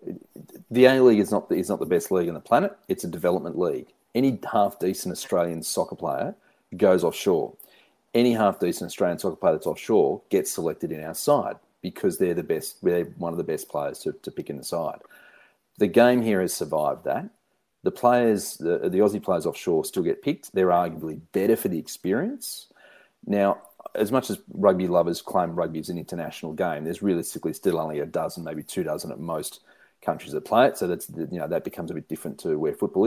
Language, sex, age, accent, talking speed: English, male, 40-59, Australian, 205 wpm